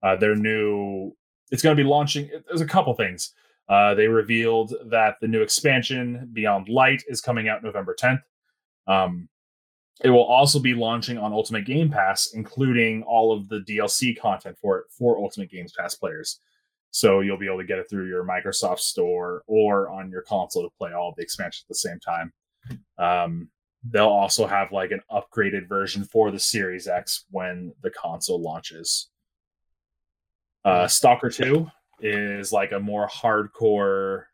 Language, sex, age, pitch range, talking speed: English, male, 20-39, 95-125 Hz, 170 wpm